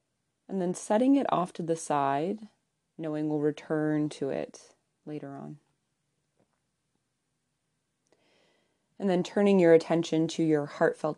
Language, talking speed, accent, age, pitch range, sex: English, 125 wpm, American, 20-39, 150-175 Hz, female